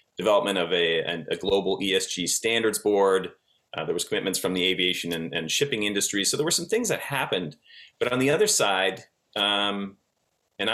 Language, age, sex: English, 30-49, male